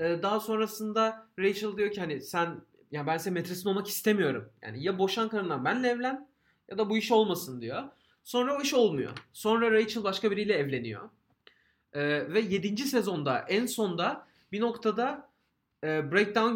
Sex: male